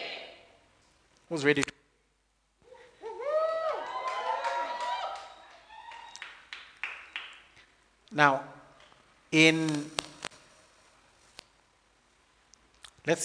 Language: English